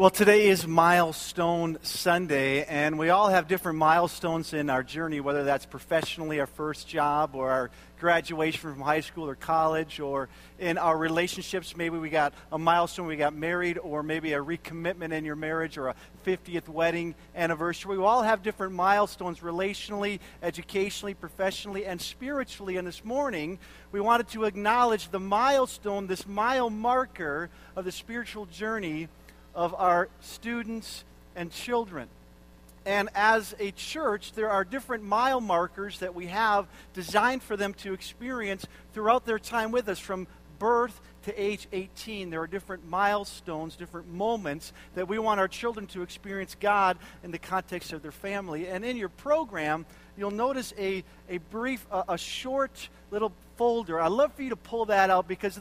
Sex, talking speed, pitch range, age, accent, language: male, 165 wpm, 165-210 Hz, 50-69, American, English